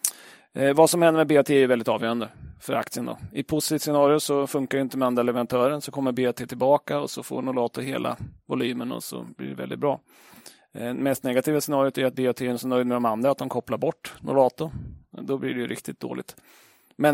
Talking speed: 220 wpm